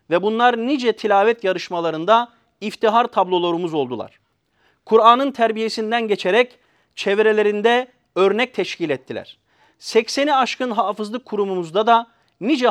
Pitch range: 180-235 Hz